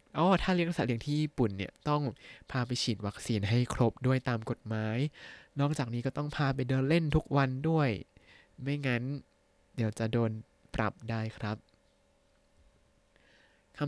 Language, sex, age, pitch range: Thai, male, 20-39, 110-150 Hz